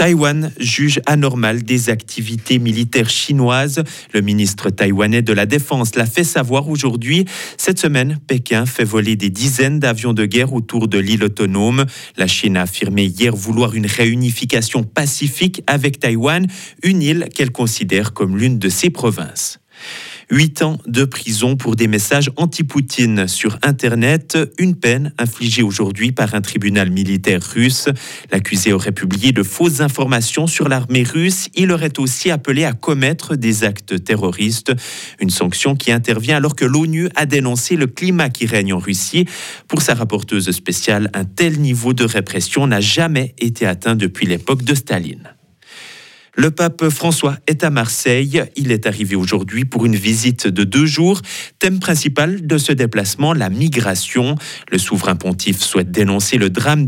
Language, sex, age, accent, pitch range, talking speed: French, male, 40-59, French, 105-150 Hz, 160 wpm